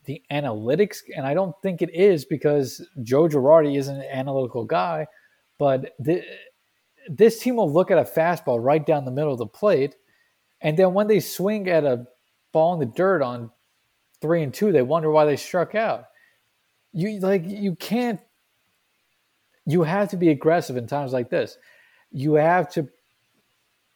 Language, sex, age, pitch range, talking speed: English, male, 20-39, 130-170 Hz, 165 wpm